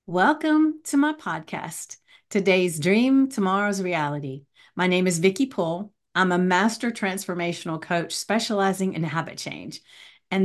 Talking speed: 130 wpm